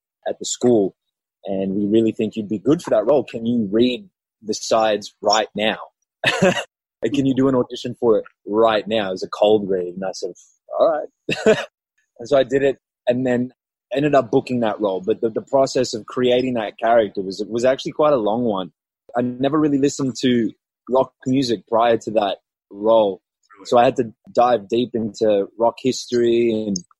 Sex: male